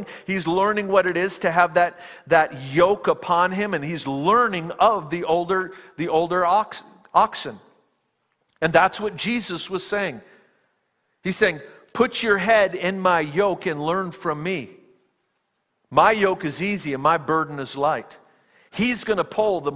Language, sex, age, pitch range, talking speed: English, male, 50-69, 150-190 Hz, 160 wpm